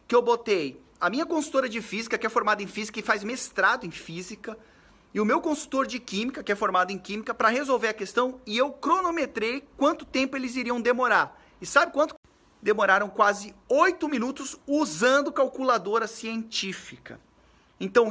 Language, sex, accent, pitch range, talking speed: Portuguese, male, Brazilian, 205-270 Hz, 170 wpm